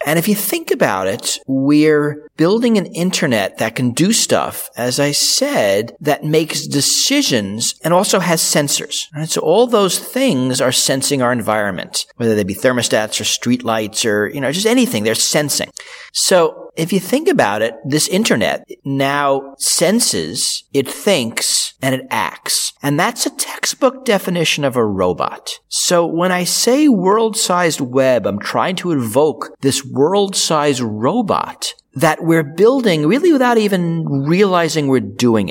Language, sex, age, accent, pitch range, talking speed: English, male, 40-59, American, 130-205 Hz, 155 wpm